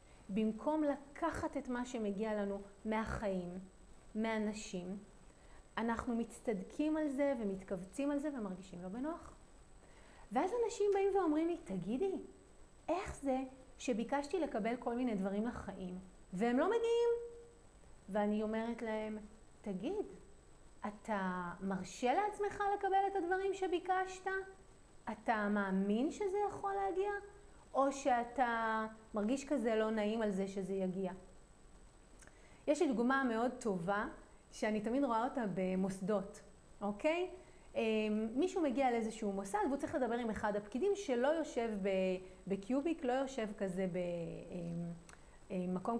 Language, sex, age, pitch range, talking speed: Hebrew, female, 30-49, 205-295 Hz, 115 wpm